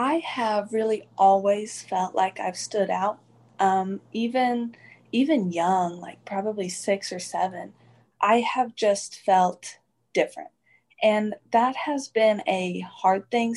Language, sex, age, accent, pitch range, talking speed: English, female, 20-39, American, 185-220 Hz, 135 wpm